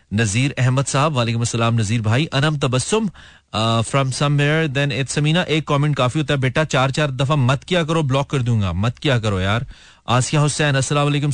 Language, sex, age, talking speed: Hindi, male, 30-49, 160 wpm